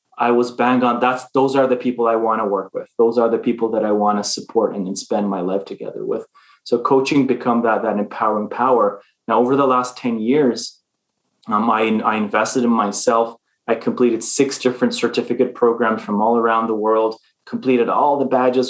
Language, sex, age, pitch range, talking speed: English, male, 20-39, 110-125 Hz, 210 wpm